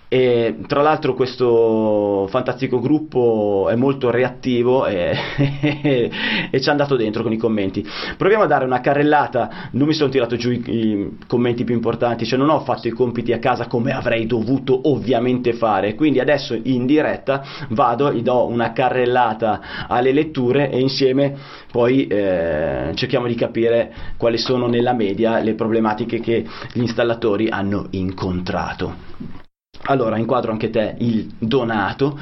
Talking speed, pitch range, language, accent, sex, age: 150 wpm, 115-135 Hz, Italian, native, male, 30-49